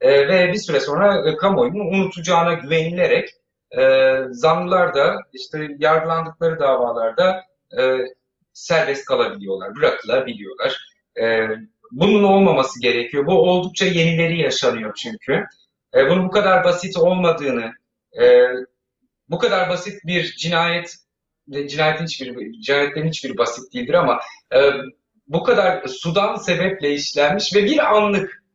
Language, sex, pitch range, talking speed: Turkish, male, 145-185 Hz, 120 wpm